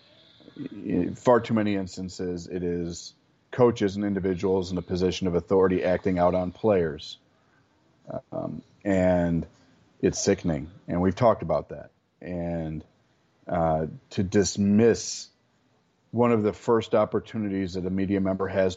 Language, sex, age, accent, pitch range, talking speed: English, male, 40-59, American, 90-115 Hz, 130 wpm